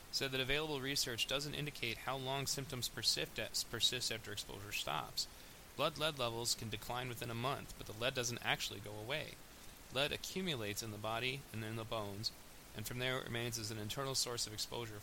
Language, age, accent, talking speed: English, 20-39, American, 195 wpm